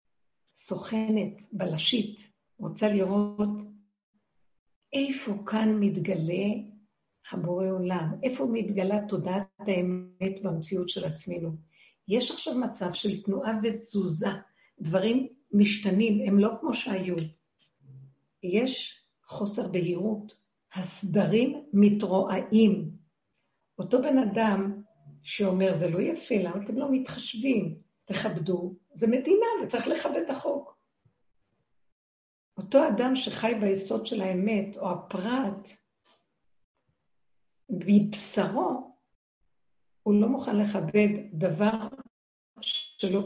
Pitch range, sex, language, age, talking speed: 185-225 Hz, female, Hebrew, 50-69, 90 wpm